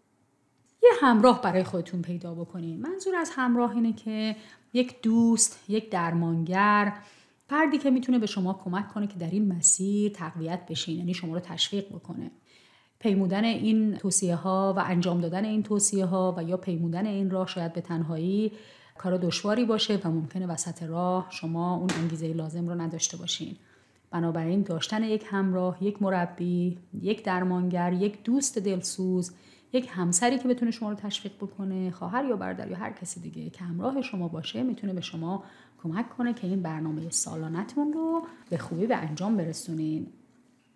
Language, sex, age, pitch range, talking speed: Persian, female, 30-49, 175-220 Hz, 160 wpm